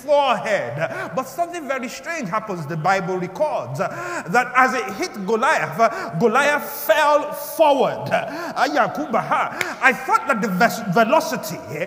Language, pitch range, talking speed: English, 230-300 Hz, 110 wpm